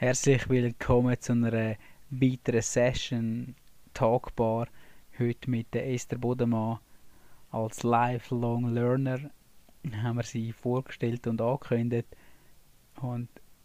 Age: 20-39